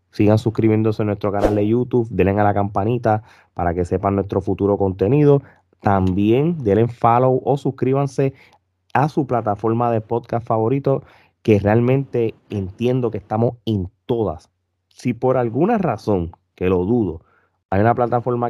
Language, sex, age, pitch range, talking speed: Spanish, male, 20-39, 95-125 Hz, 145 wpm